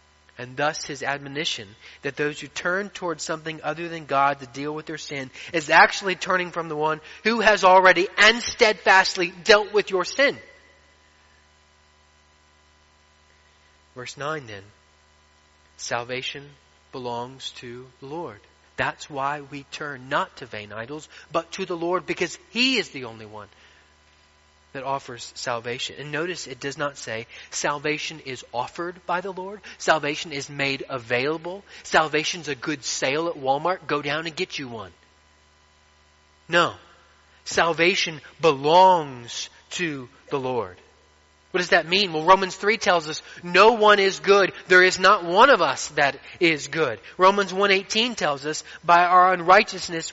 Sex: male